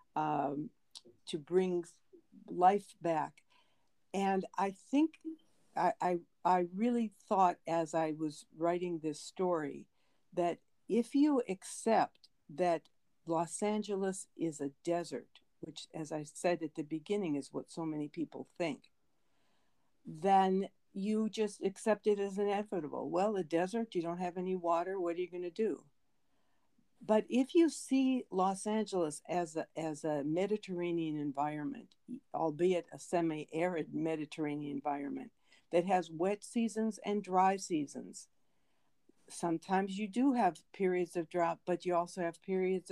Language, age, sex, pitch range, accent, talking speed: English, 60-79, female, 165-205 Hz, American, 140 wpm